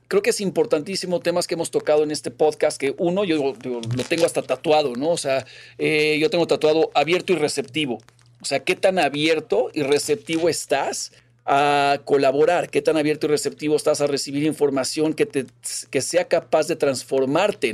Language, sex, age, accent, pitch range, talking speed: Spanish, male, 40-59, Mexican, 140-170 Hz, 185 wpm